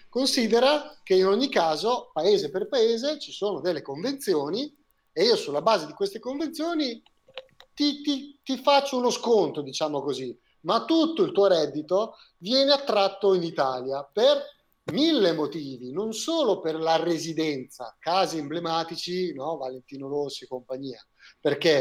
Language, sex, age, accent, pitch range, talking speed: Italian, male, 30-49, native, 150-230 Hz, 145 wpm